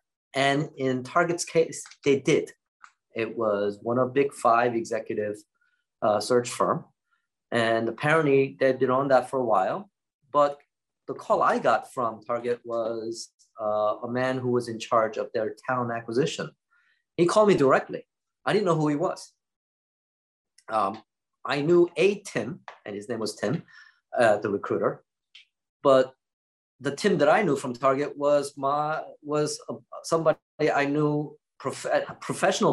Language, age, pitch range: English, 30-49, 125-165 Hz